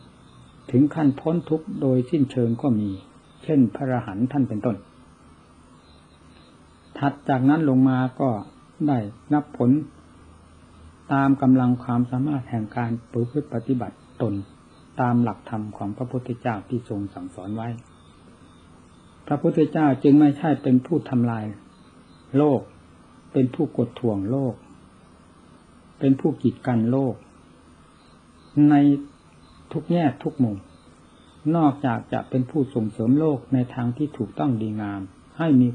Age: 60-79